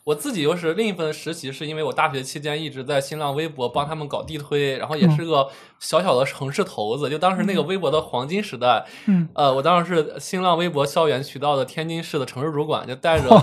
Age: 20-39